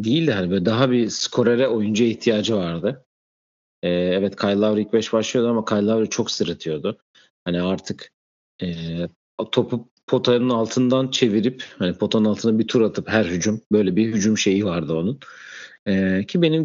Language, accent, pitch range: Turkish, native, 95-120 Hz